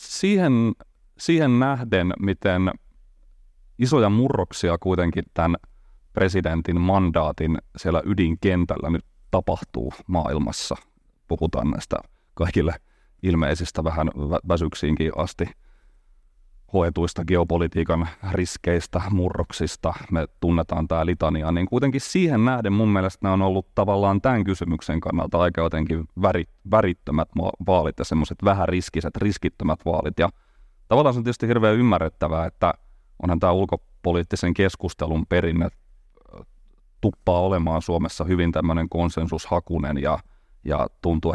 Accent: native